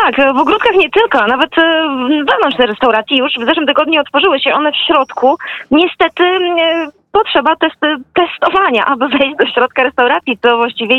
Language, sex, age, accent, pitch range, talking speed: Polish, female, 20-39, native, 245-320 Hz, 155 wpm